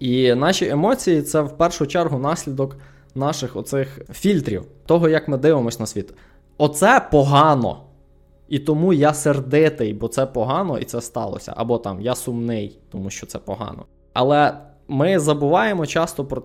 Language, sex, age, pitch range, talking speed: Ukrainian, male, 20-39, 115-150 Hz, 155 wpm